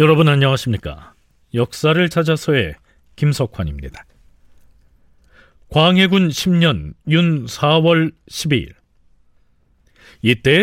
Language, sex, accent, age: Korean, male, native, 40-59